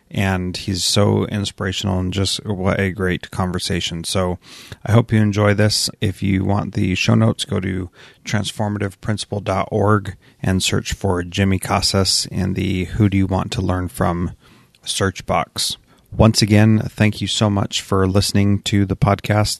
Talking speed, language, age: 155 wpm, English, 30-49